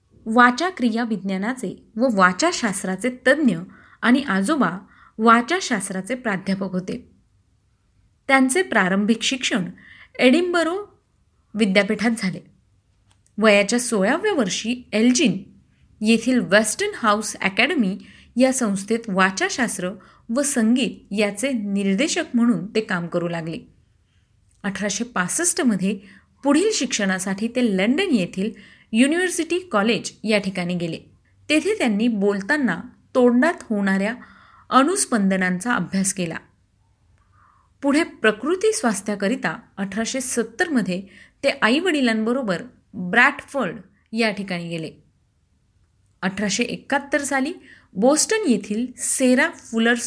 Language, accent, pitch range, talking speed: Marathi, native, 190-260 Hz, 80 wpm